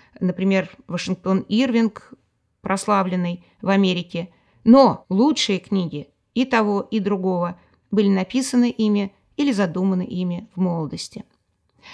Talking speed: 105 wpm